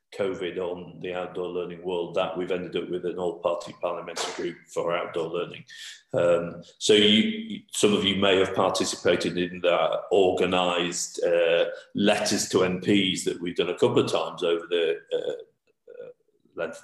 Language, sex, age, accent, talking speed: English, male, 40-59, British, 150 wpm